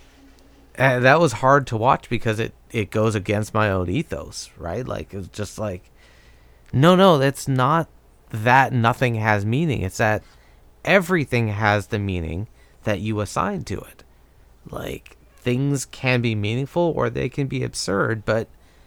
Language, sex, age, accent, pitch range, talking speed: English, male, 30-49, American, 95-120 Hz, 155 wpm